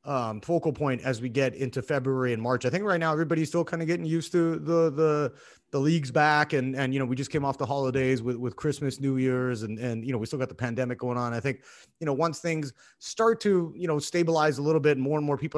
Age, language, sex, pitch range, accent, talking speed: 30-49, English, male, 130-165 Hz, American, 270 wpm